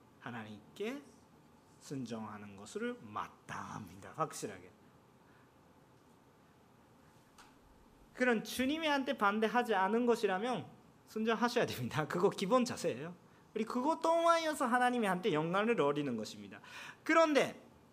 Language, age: Korean, 40-59